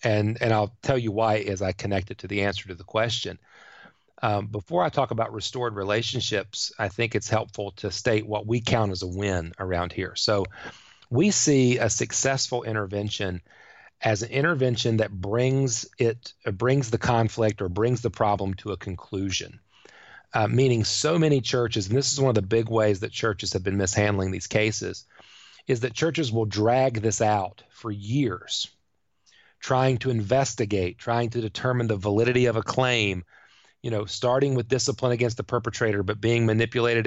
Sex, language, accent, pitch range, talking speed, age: male, English, American, 105-125 Hz, 180 wpm, 40-59